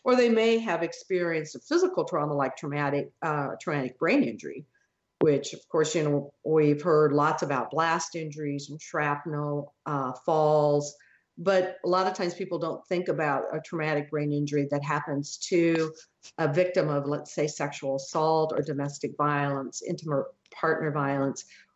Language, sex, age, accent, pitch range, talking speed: English, female, 50-69, American, 145-180 Hz, 160 wpm